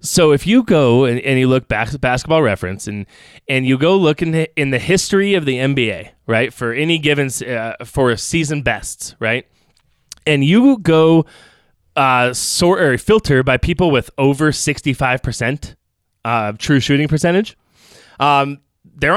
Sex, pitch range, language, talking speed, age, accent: male, 125-160 Hz, English, 165 wpm, 20-39, American